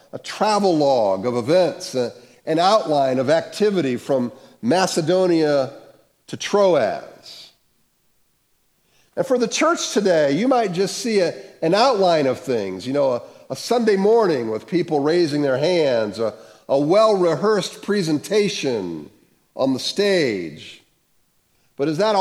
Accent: American